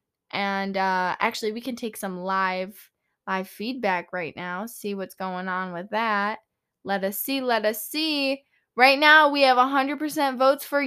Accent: American